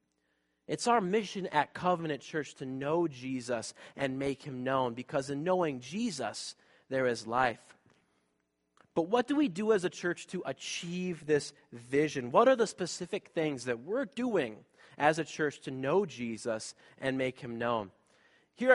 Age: 30-49